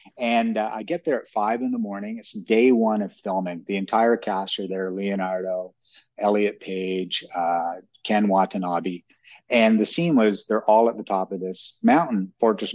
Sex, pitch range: male, 95-115 Hz